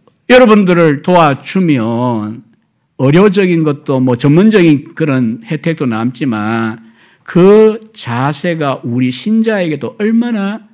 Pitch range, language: 120-175 Hz, Korean